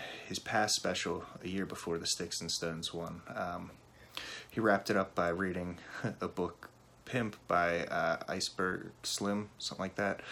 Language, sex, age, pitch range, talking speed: English, male, 30-49, 90-105 Hz, 165 wpm